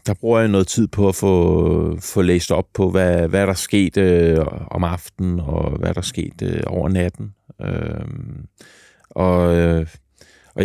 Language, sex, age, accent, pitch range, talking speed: Danish, male, 30-49, native, 95-110 Hz, 170 wpm